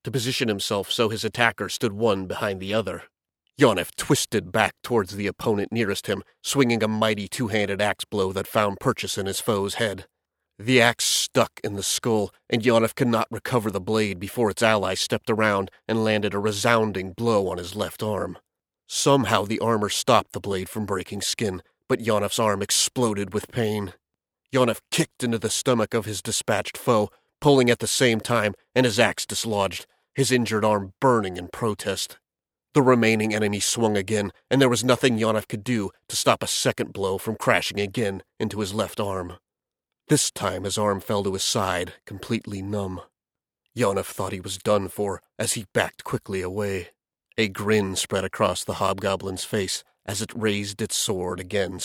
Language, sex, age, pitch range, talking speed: English, male, 30-49, 100-115 Hz, 180 wpm